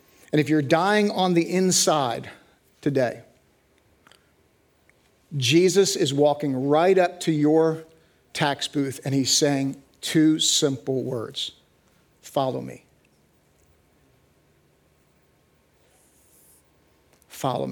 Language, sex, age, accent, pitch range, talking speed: English, male, 50-69, American, 140-160 Hz, 90 wpm